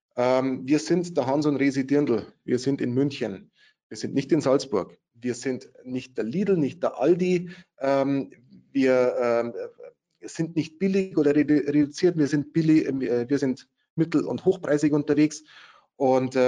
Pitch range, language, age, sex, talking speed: 125-150 Hz, German, 30-49, male, 145 wpm